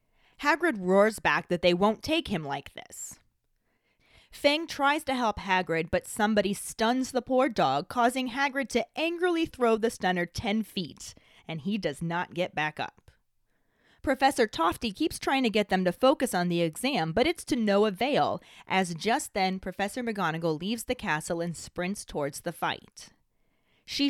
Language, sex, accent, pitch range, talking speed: English, female, American, 180-260 Hz, 170 wpm